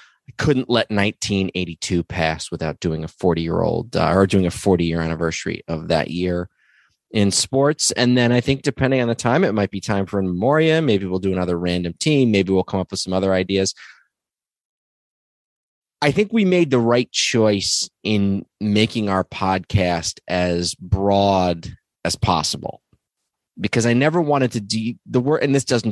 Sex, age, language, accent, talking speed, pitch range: male, 20-39, English, American, 180 wpm, 95-120 Hz